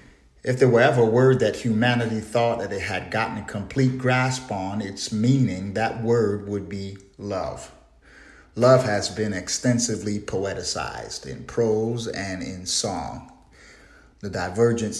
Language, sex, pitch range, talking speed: English, male, 100-125 Hz, 145 wpm